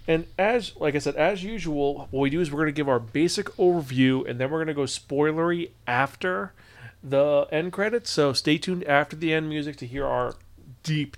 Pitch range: 125-165 Hz